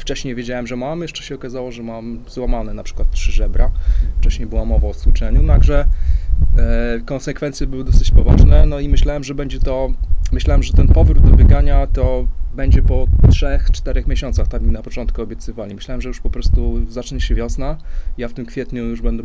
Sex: male